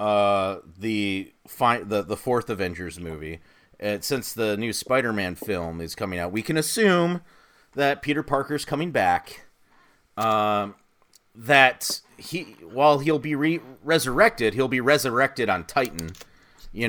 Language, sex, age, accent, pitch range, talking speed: English, male, 30-49, American, 100-130 Hz, 140 wpm